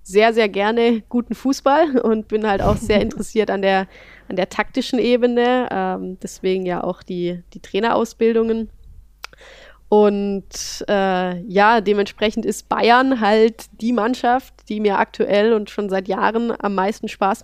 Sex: female